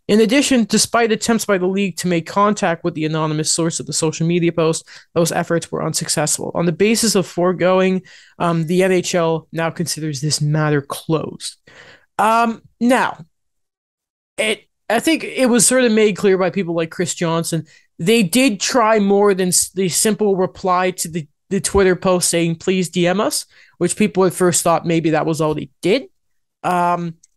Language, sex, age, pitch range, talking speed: English, male, 20-39, 170-225 Hz, 180 wpm